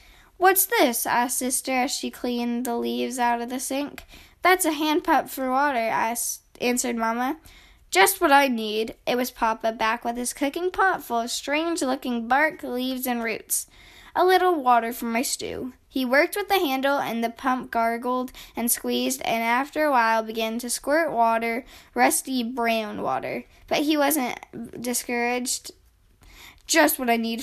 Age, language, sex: 10-29, English, female